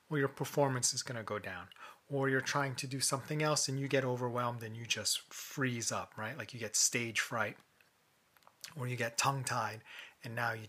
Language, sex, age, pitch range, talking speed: English, male, 30-49, 120-150 Hz, 210 wpm